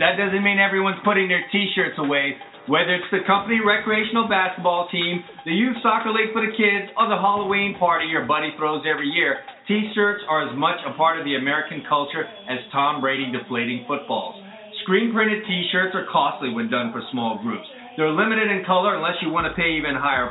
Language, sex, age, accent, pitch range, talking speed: English, male, 40-59, American, 155-210 Hz, 200 wpm